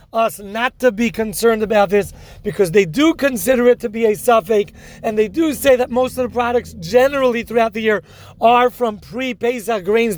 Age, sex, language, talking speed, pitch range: 40-59, male, English, 195 wpm, 215-250 Hz